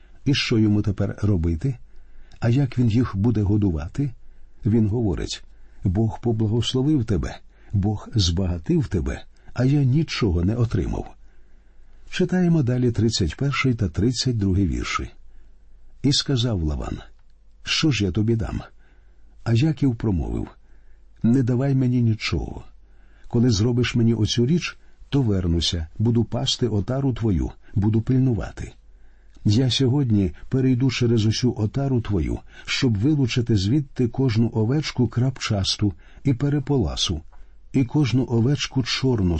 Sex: male